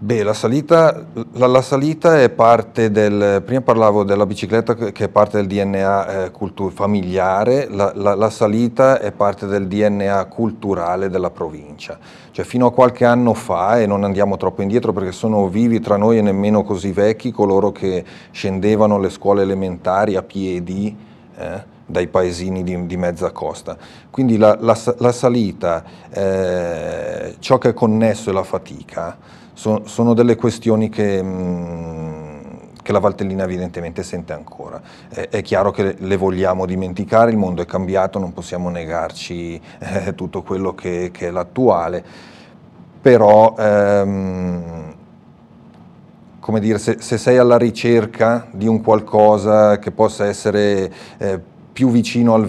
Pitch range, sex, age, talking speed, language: 95-115 Hz, male, 30-49, 145 wpm, Italian